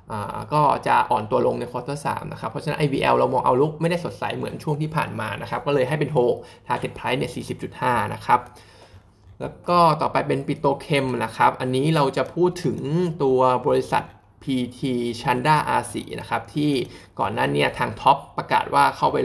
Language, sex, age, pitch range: Thai, male, 20-39, 120-150 Hz